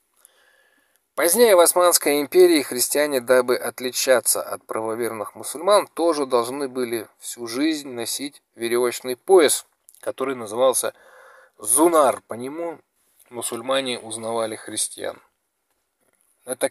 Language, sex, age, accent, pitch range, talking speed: Russian, male, 20-39, native, 115-165 Hz, 95 wpm